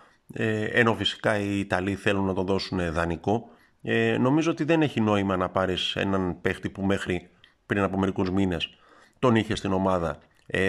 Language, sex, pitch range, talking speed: Greek, male, 90-120 Hz, 170 wpm